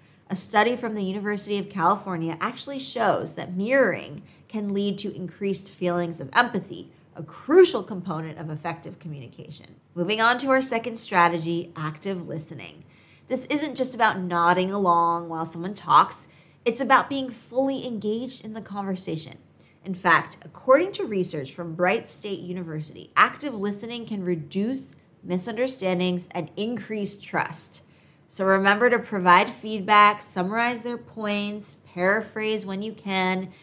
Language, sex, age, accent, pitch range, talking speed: English, female, 30-49, American, 170-220 Hz, 140 wpm